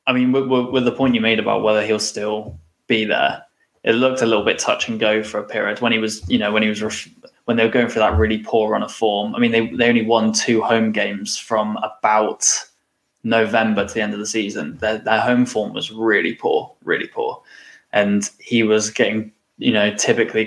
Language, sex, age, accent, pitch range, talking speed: English, male, 10-29, British, 105-120 Hz, 235 wpm